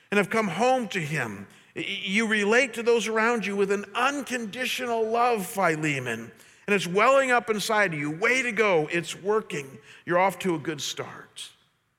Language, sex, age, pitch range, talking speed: English, male, 50-69, 150-210 Hz, 175 wpm